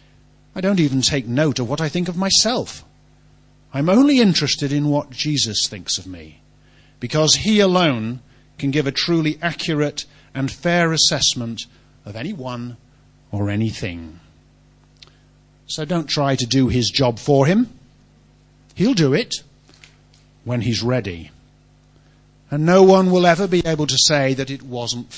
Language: English